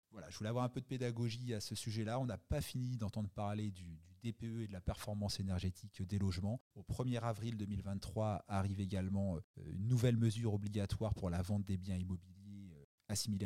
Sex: male